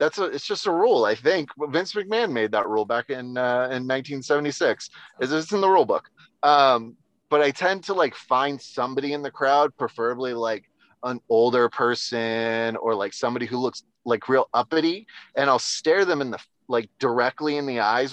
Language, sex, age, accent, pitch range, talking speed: English, male, 30-49, American, 115-145 Hz, 195 wpm